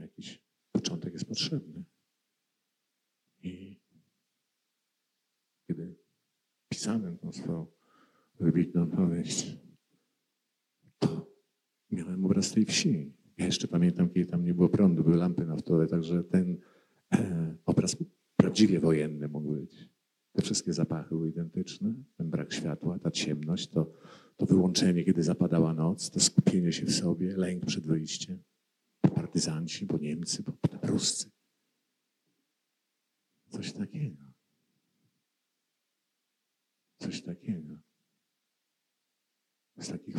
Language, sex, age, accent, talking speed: Polish, male, 50-69, native, 100 wpm